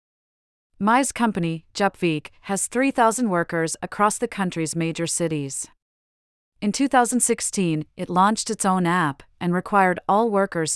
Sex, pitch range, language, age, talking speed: female, 165-205 Hz, English, 40-59, 125 wpm